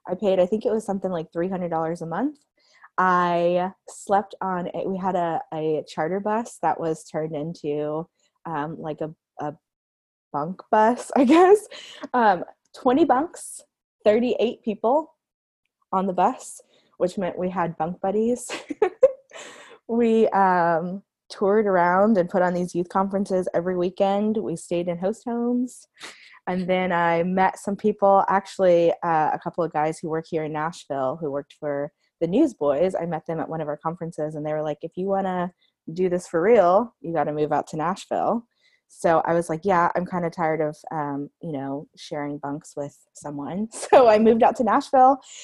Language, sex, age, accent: English, female, 20-39, American